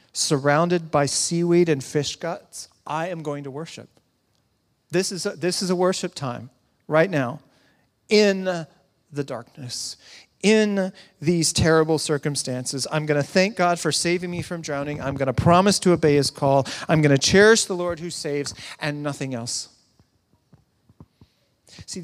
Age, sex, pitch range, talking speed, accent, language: 40-59, male, 140-190 Hz, 150 wpm, American, English